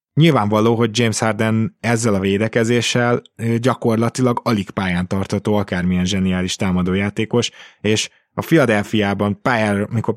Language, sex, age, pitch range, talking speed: Hungarian, male, 20-39, 100-125 Hz, 105 wpm